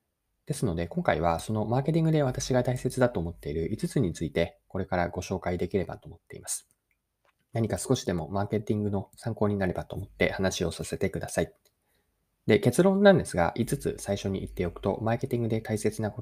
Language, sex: Japanese, male